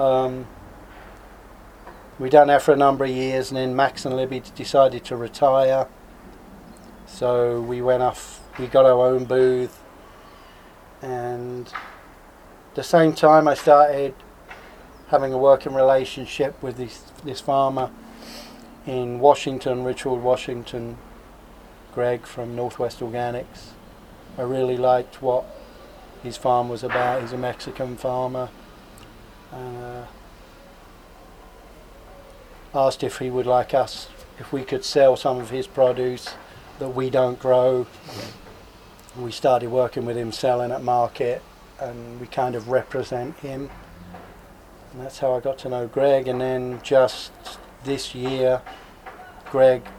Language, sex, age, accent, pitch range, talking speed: English, male, 40-59, British, 120-130 Hz, 130 wpm